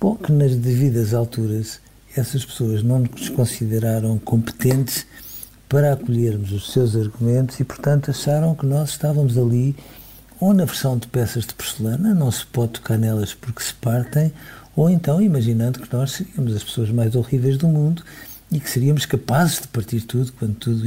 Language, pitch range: Portuguese, 115-150 Hz